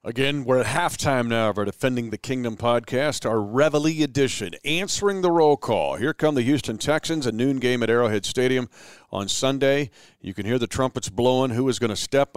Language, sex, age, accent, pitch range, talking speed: English, male, 50-69, American, 115-145 Hz, 205 wpm